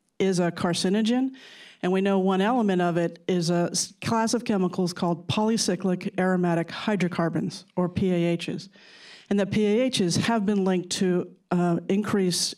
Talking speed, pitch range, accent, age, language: 145 wpm, 180-215 Hz, American, 50-69, English